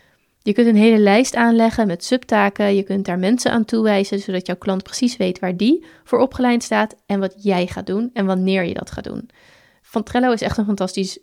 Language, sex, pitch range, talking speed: Dutch, female, 195-235 Hz, 215 wpm